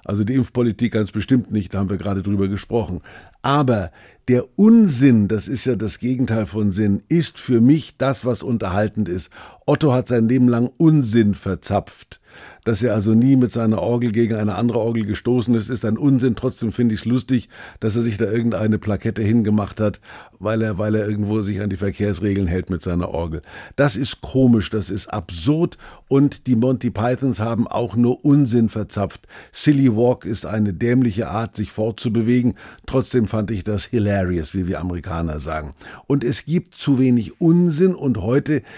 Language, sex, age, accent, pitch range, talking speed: German, male, 50-69, German, 105-130 Hz, 185 wpm